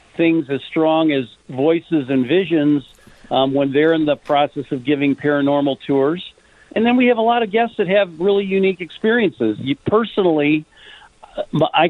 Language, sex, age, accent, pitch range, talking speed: English, male, 50-69, American, 145-180 Hz, 165 wpm